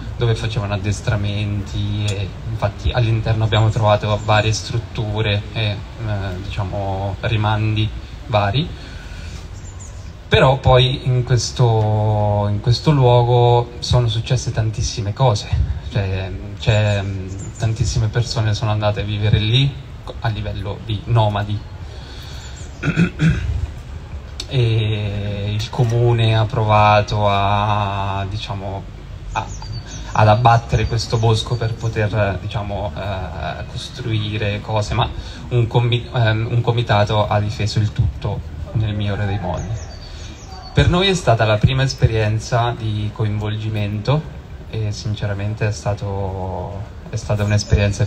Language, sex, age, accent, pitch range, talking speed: Italian, male, 20-39, native, 100-115 Hz, 110 wpm